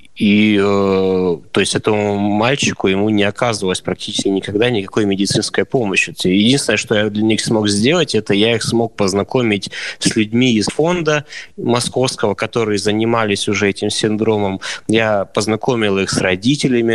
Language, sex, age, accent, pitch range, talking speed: Russian, male, 20-39, native, 95-110 Hz, 145 wpm